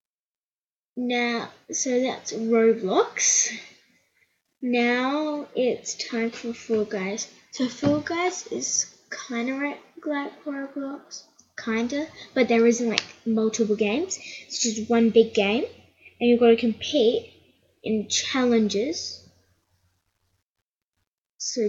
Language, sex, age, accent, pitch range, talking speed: English, female, 10-29, Australian, 220-255 Hz, 110 wpm